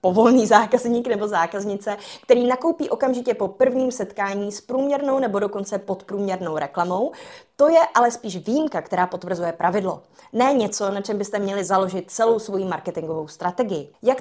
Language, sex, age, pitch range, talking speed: Czech, female, 20-39, 195-255 Hz, 150 wpm